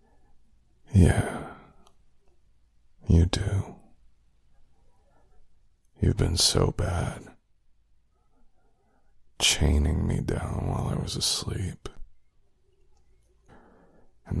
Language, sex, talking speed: English, male, 65 wpm